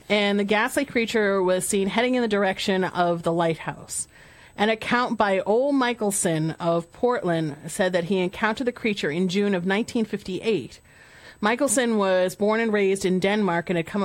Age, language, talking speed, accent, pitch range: 40-59, English, 170 wpm, American, 175-215 Hz